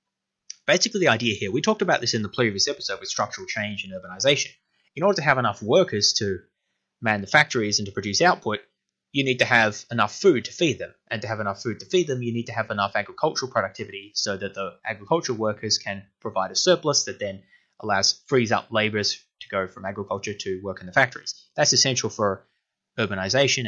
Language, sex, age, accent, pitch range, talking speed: English, male, 20-39, Australian, 105-130 Hz, 210 wpm